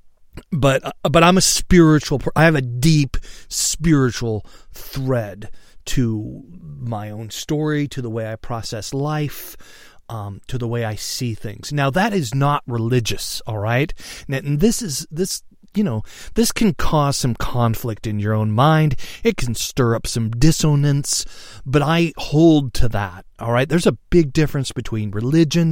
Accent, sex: American, male